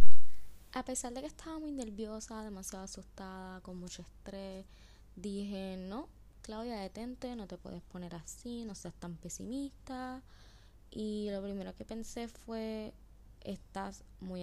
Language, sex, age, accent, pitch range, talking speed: Spanish, female, 10-29, American, 190-225 Hz, 135 wpm